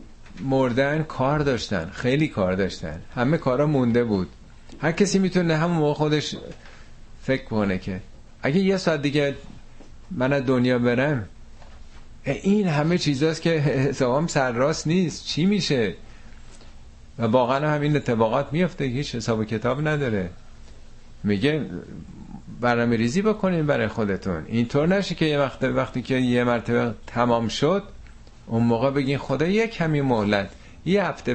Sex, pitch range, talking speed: male, 90-135 Hz, 140 wpm